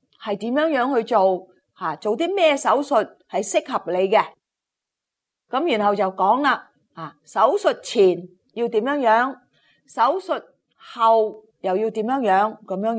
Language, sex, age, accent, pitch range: Chinese, female, 30-49, native, 215-305 Hz